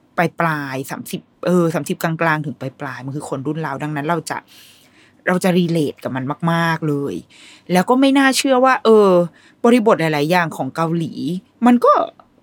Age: 20-39